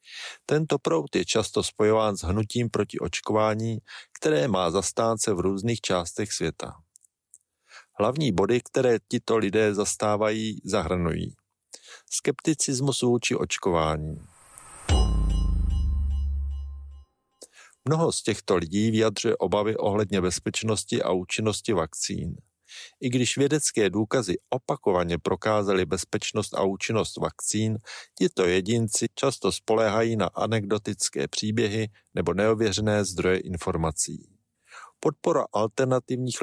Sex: male